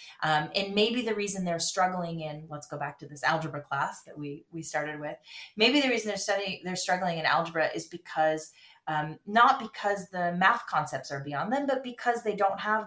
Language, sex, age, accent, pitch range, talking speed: English, female, 30-49, American, 155-205 Hz, 210 wpm